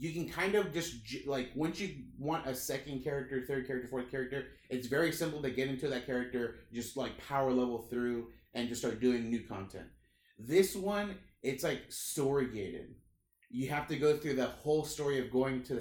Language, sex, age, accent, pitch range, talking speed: English, male, 30-49, American, 120-140 Hz, 195 wpm